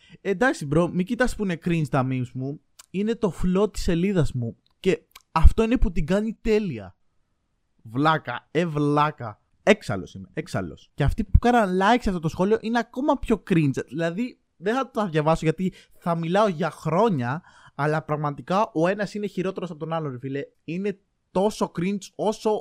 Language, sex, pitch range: Greek, male, 150-210 Hz